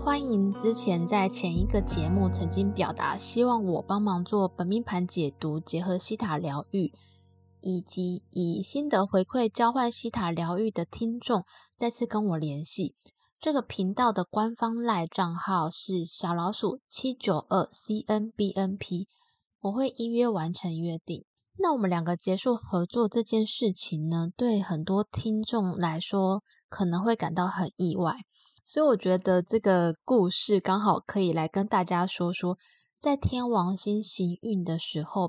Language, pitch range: Chinese, 175-225 Hz